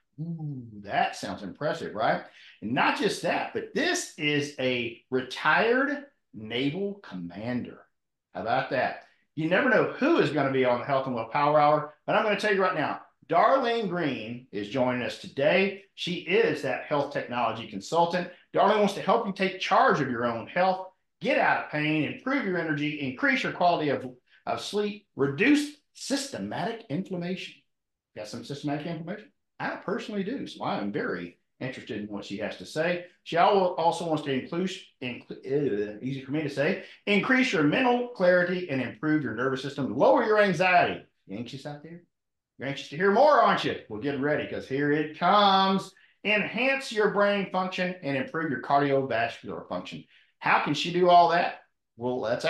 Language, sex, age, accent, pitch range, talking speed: English, male, 50-69, American, 135-195 Hz, 180 wpm